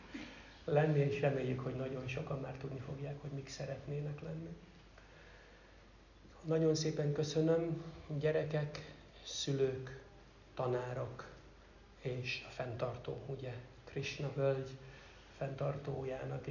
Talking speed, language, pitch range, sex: 95 wpm, Hungarian, 130-150 Hz, male